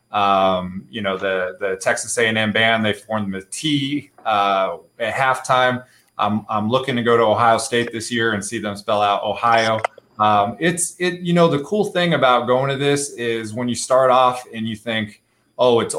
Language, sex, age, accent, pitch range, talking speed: English, male, 20-39, American, 110-130 Hz, 200 wpm